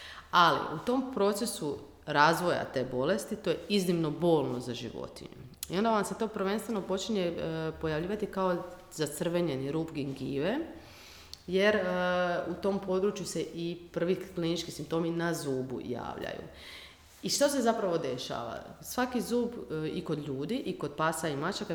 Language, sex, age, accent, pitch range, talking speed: Croatian, female, 30-49, native, 155-200 Hz, 150 wpm